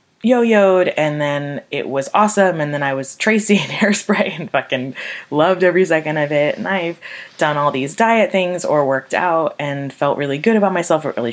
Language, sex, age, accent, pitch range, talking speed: English, female, 20-39, American, 135-195 Hz, 200 wpm